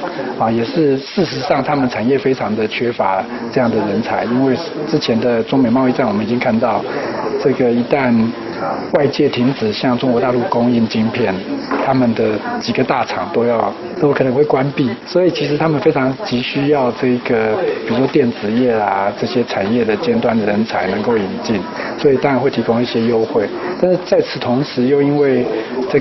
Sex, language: male, Chinese